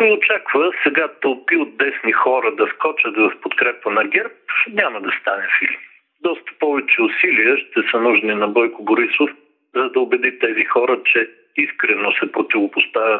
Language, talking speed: Bulgarian, 160 wpm